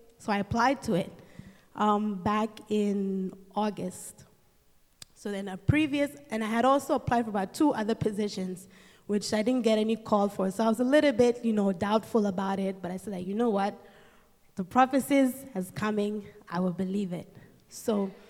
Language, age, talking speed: English, 20-39, 190 wpm